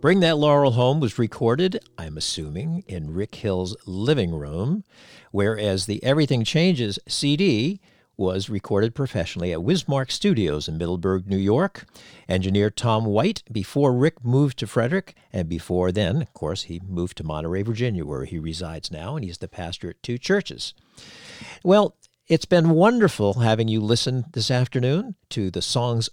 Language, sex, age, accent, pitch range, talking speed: English, male, 50-69, American, 95-145 Hz, 160 wpm